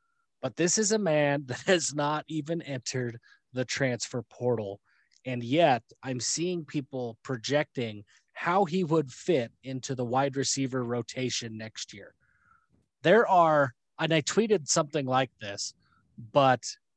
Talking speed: 140 wpm